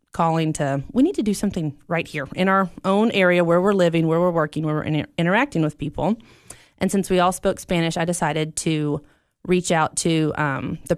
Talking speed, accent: 210 wpm, American